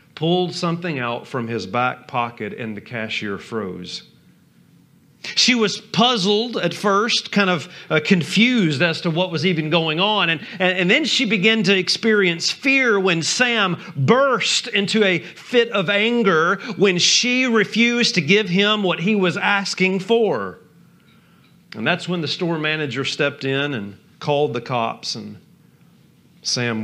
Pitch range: 165-225 Hz